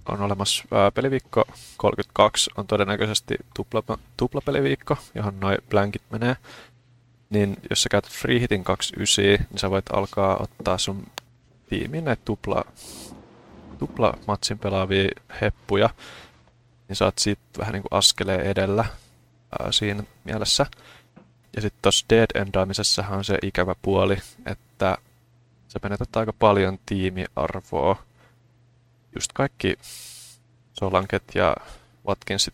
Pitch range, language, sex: 95-120 Hz, Finnish, male